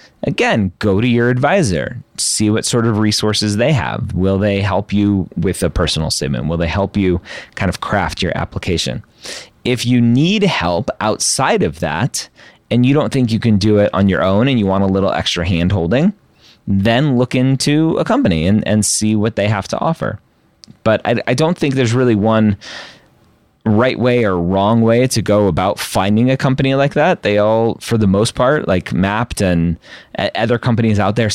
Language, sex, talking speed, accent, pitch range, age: English, male, 195 wpm, American, 100-130 Hz, 30-49